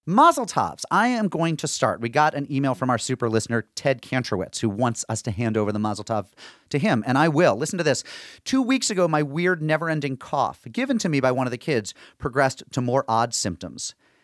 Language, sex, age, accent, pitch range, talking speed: English, male, 40-59, American, 110-155 Hz, 230 wpm